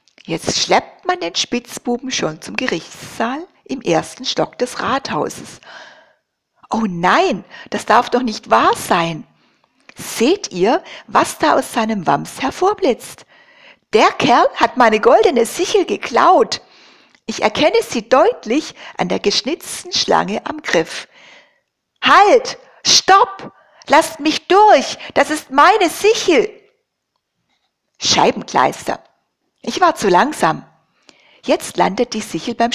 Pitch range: 210-345 Hz